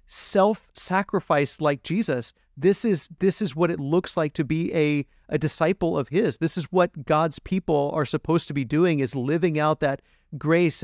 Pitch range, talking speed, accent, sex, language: 150-190 Hz, 185 wpm, American, male, English